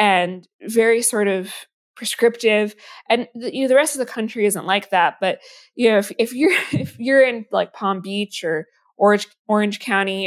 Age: 20-39